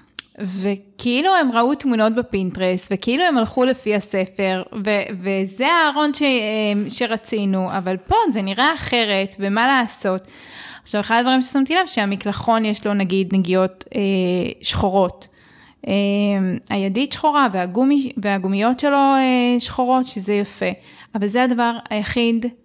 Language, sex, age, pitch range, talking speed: Hebrew, female, 20-39, 200-250 Hz, 125 wpm